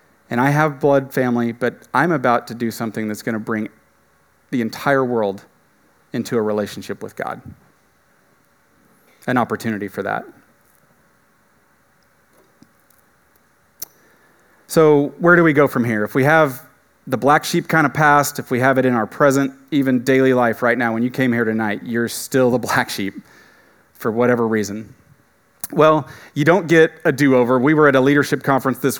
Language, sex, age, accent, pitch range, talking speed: English, male, 30-49, American, 115-145 Hz, 165 wpm